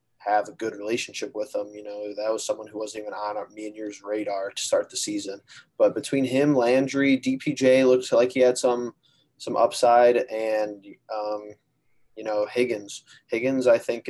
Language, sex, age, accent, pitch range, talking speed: English, male, 20-39, American, 105-125 Hz, 185 wpm